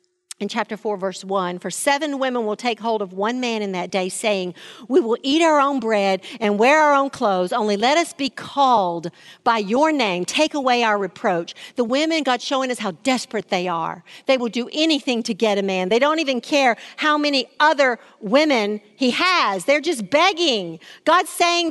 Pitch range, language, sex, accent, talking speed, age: 200-270 Hz, English, female, American, 200 wpm, 50-69